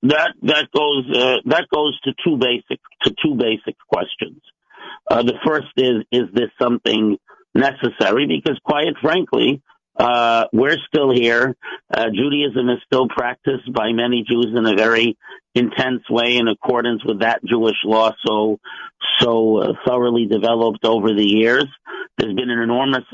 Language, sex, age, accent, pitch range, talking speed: English, male, 50-69, American, 115-130 Hz, 155 wpm